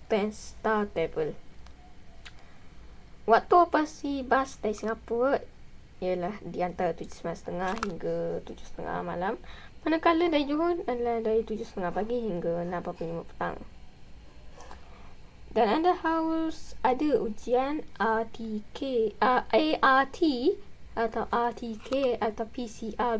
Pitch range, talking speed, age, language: 195-250 Hz, 95 wpm, 20-39, Malay